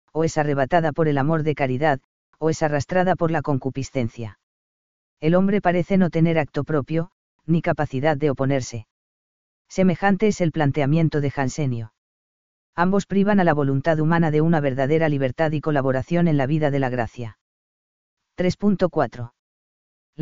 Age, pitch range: 40-59, 135-170 Hz